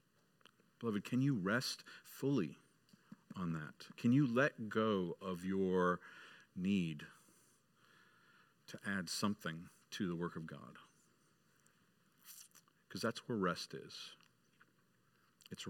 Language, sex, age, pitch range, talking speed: English, male, 50-69, 95-135 Hz, 105 wpm